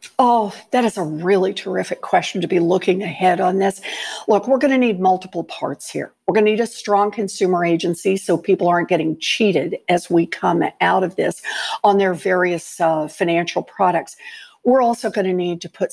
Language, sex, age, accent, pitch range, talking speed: English, female, 60-79, American, 180-230 Hz, 200 wpm